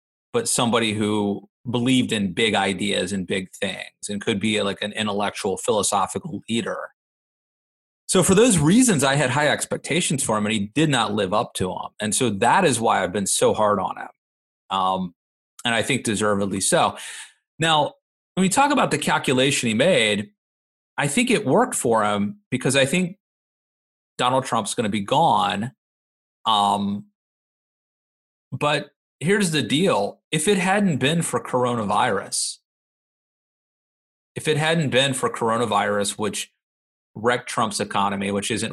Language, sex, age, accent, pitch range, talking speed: English, male, 30-49, American, 100-155 Hz, 155 wpm